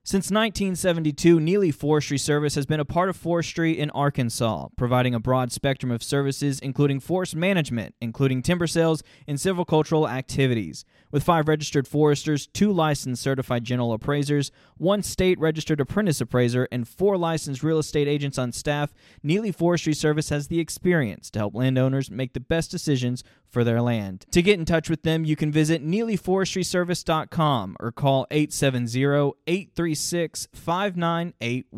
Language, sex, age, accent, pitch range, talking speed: English, male, 20-39, American, 120-160 Hz, 160 wpm